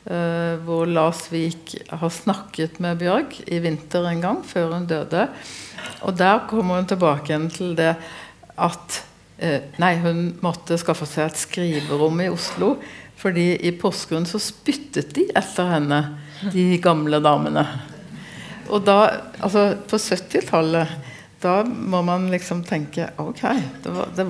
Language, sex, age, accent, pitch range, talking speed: English, female, 60-79, Swedish, 155-185 Hz, 135 wpm